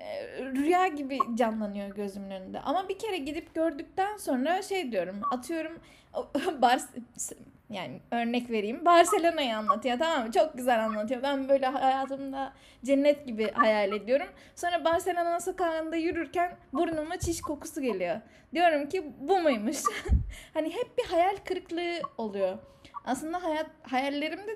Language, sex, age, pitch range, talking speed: Turkish, female, 10-29, 235-340 Hz, 130 wpm